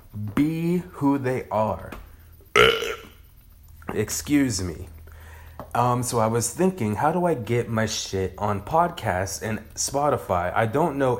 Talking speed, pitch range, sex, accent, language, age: 130 wpm, 95-120 Hz, male, American, English, 30-49